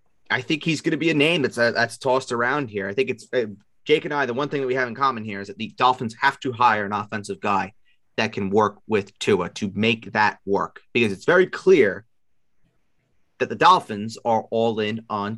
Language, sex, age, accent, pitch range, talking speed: English, male, 30-49, American, 110-130 Hz, 235 wpm